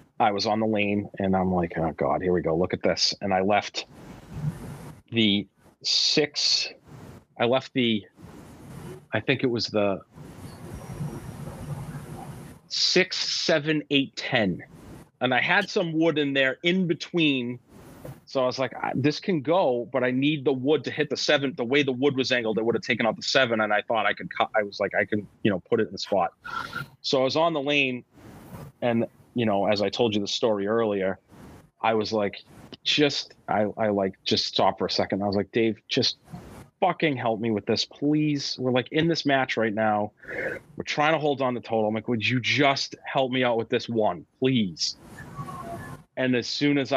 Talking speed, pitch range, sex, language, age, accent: 200 wpm, 105-145 Hz, male, English, 30-49, American